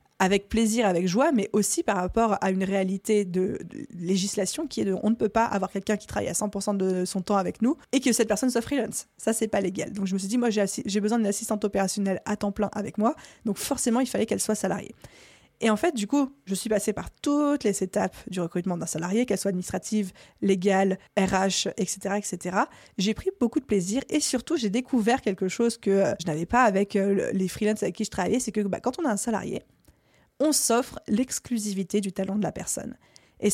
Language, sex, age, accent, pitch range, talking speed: French, female, 20-39, French, 195-230 Hz, 230 wpm